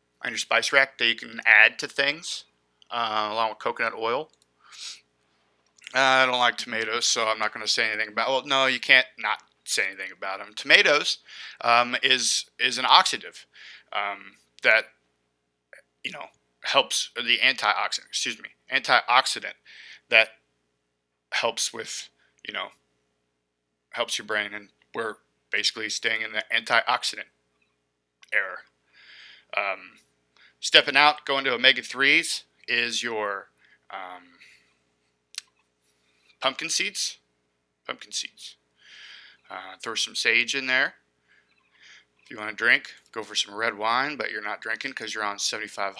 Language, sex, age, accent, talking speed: English, male, 20-39, American, 140 wpm